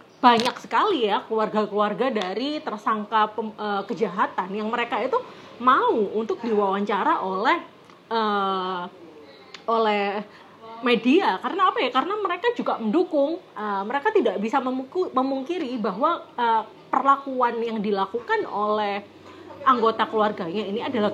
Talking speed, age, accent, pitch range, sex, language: 115 wpm, 30-49, native, 210-280 Hz, female, Indonesian